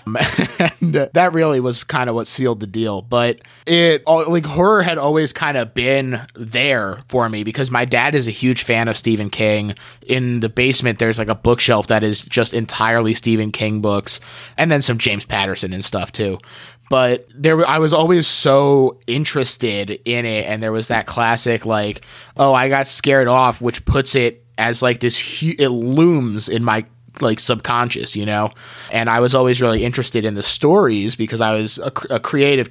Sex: male